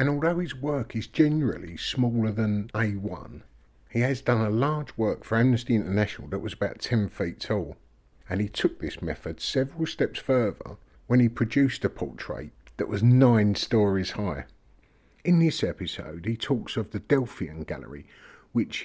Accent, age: British, 50-69